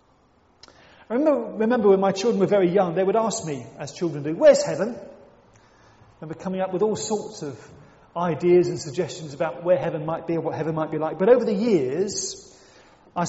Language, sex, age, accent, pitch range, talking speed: English, male, 40-59, British, 145-190 Hz, 200 wpm